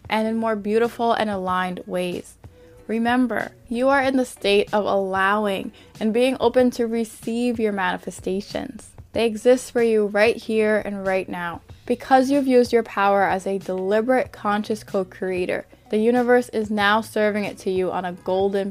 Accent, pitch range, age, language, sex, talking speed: American, 195-245 Hz, 10-29, English, female, 165 wpm